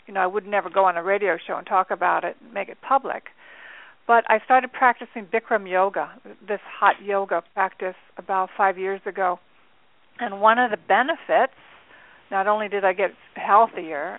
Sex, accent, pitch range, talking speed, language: female, American, 195-225 Hz, 180 wpm, English